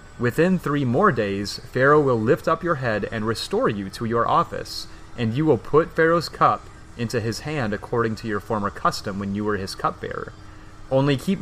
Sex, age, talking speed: male, 30-49, 195 wpm